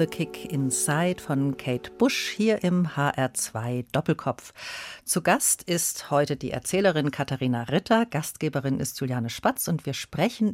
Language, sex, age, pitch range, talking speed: German, female, 50-69, 140-200 Hz, 135 wpm